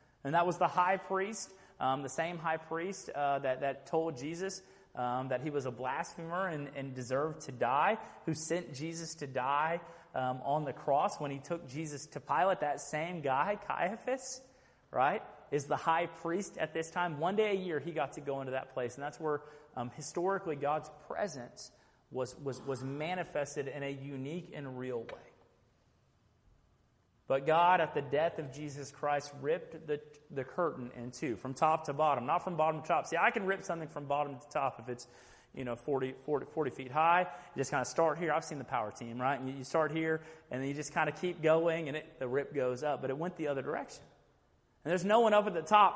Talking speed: 220 wpm